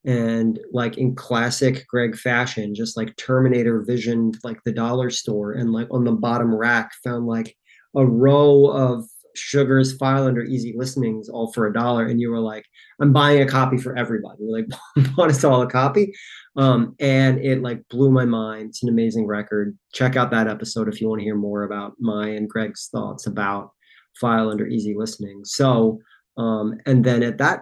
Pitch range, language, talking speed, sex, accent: 110-125 Hz, English, 190 wpm, male, American